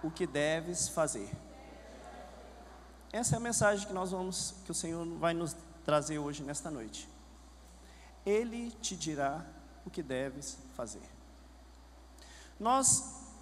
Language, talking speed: Portuguese, 125 wpm